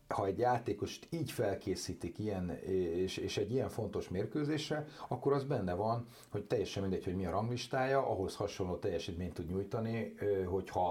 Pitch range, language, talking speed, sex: 95-120 Hz, Hungarian, 160 wpm, male